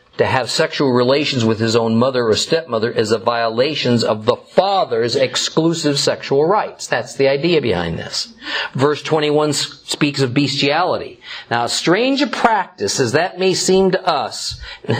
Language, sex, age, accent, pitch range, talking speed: English, male, 50-69, American, 125-165 Hz, 165 wpm